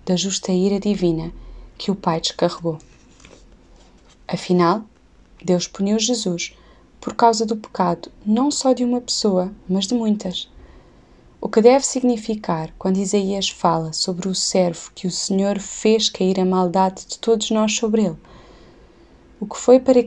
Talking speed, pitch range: 150 wpm, 180-215 Hz